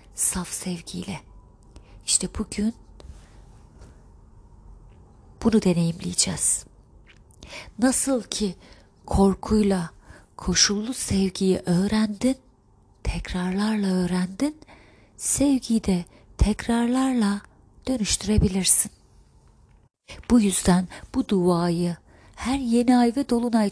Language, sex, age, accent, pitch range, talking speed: Turkish, female, 30-49, native, 175-215 Hz, 70 wpm